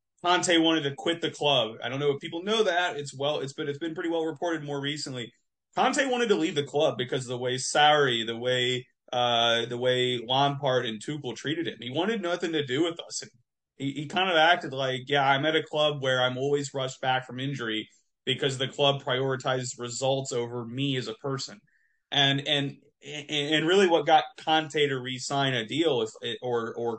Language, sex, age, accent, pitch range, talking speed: English, male, 30-49, American, 125-150 Hz, 210 wpm